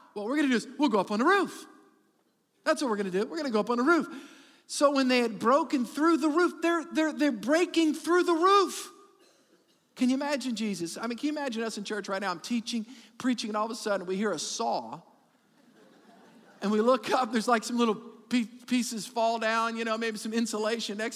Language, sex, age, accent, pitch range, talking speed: English, male, 50-69, American, 220-285 Hz, 240 wpm